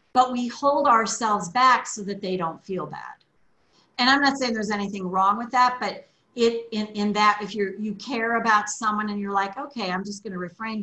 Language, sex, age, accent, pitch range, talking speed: English, female, 40-59, American, 200-250 Hz, 215 wpm